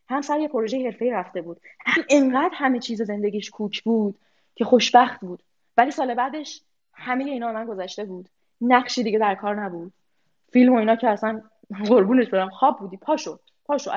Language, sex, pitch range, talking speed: Persian, female, 220-295 Hz, 170 wpm